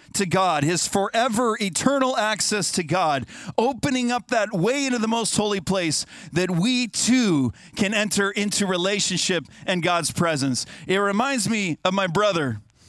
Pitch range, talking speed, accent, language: 180-235 Hz, 155 wpm, American, English